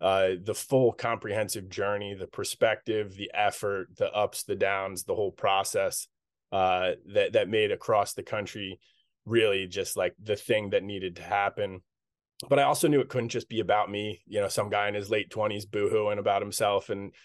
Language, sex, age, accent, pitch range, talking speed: English, male, 20-39, American, 100-135 Hz, 190 wpm